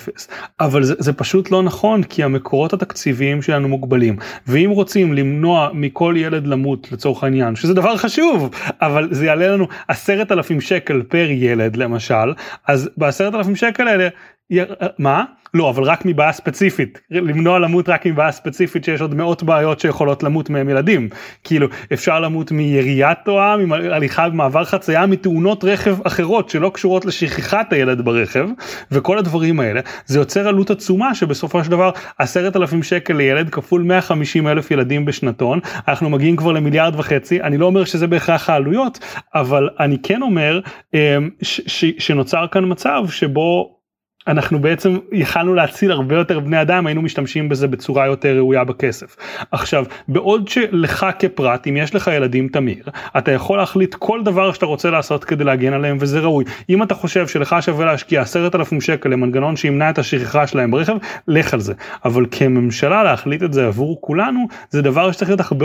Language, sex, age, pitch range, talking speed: Hebrew, male, 30-49, 140-185 Hz, 165 wpm